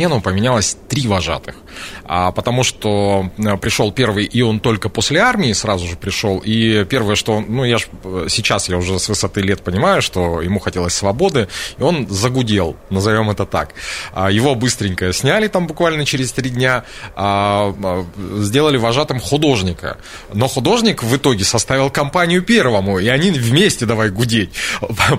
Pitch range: 100-130 Hz